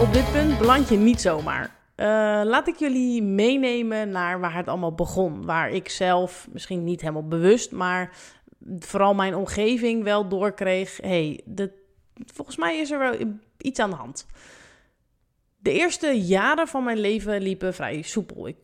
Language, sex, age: Dutch, female, 20-39